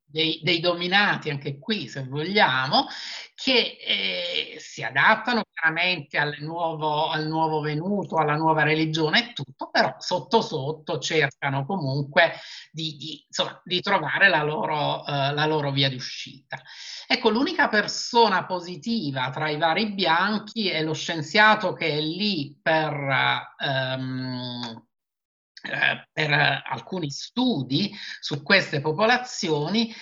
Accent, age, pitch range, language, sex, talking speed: native, 50-69, 145-190 Hz, Italian, male, 115 wpm